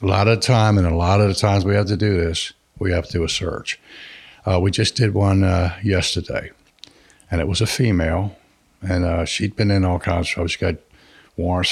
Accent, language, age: American, English, 60-79